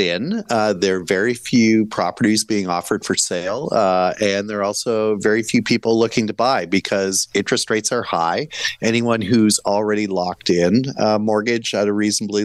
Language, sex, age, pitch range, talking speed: English, male, 40-59, 95-110 Hz, 180 wpm